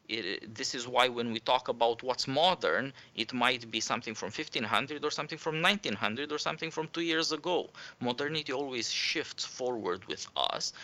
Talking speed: 170 wpm